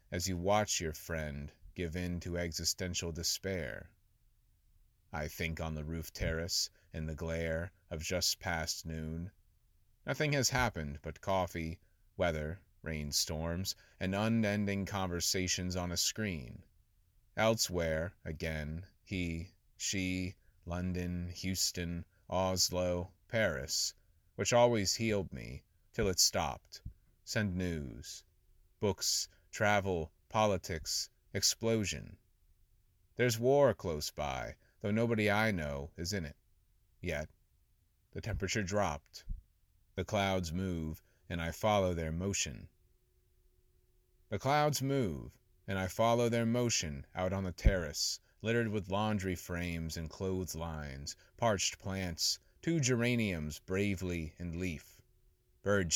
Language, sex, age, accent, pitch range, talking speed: English, male, 30-49, American, 80-100 Hz, 115 wpm